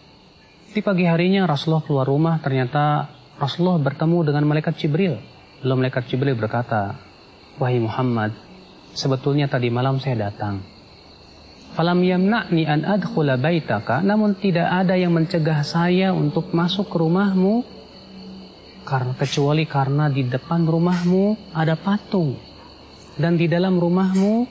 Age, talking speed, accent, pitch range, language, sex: 30-49, 120 wpm, native, 130-175 Hz, Indonesian, male